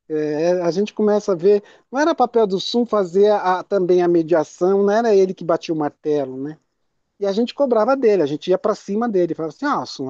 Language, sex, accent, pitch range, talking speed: Portuguese, male, Brazilian, 160-215 Hz, 240 wpm